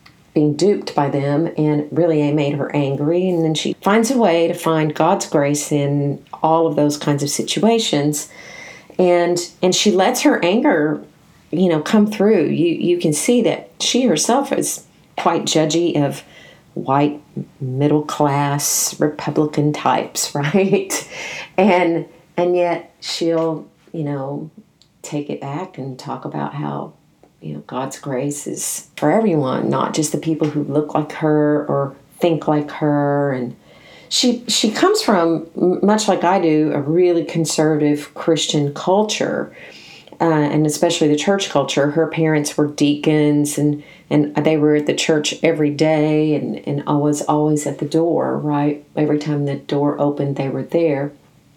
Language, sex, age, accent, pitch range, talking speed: English, female, 50-69, American, 145-175 Hz, 160 wpm